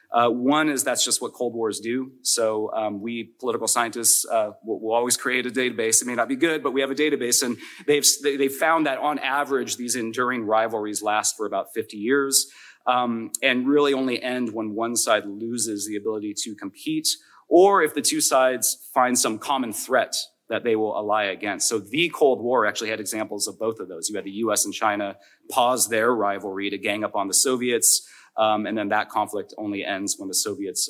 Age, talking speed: 30-49, 215 wpm